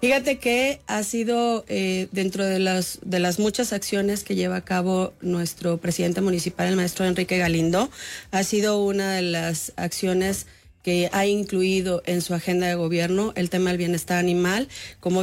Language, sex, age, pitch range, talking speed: English, female, 30-49, 180-210 Hz, 170 wpm